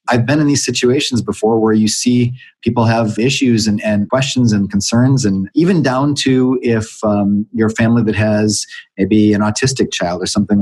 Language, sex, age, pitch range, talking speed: English, male, 30-49, 105-125 Hz, 185 wpm